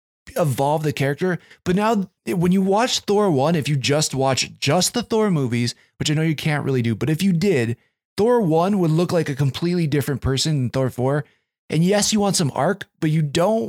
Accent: American